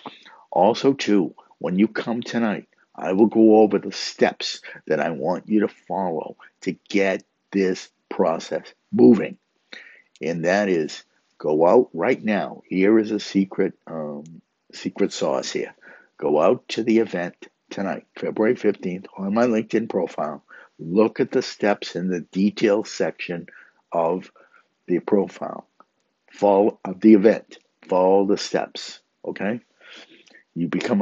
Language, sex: English, male